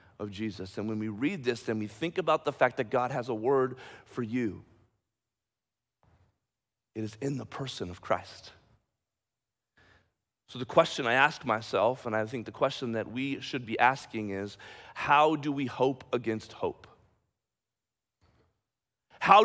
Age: 40-59